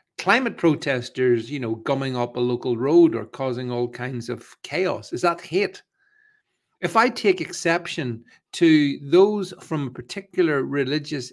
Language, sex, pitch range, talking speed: English, male, 125-175 Hz, 145 wpm